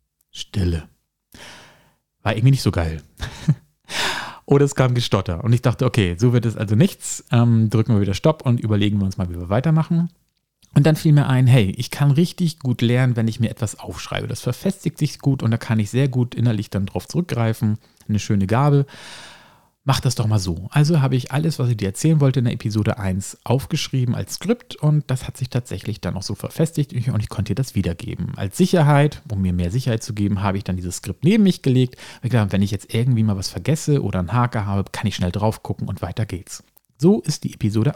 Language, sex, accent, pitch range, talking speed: German, male, German, 105-145 Hz, 225 wpm